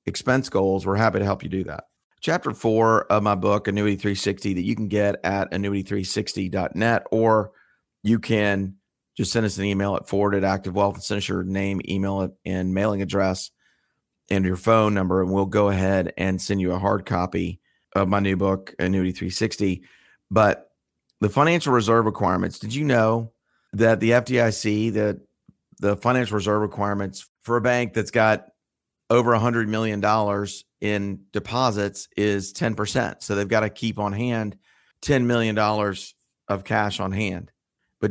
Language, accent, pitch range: English, American, 95-110 Hz